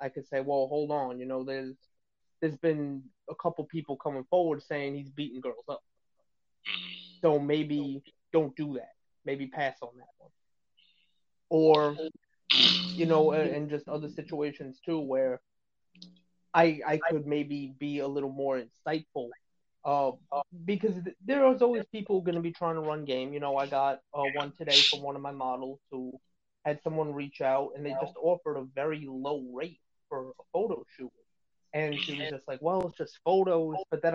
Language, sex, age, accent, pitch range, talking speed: English, male, 20-39, American, 140-175 Hz, 180 wpm